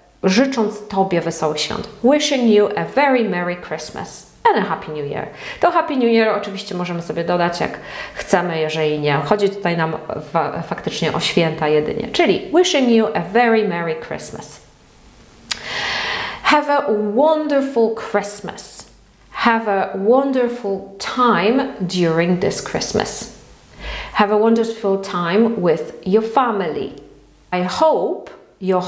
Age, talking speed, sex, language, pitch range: 40-59, 130 wpm, female, Polish, 175-230 Hz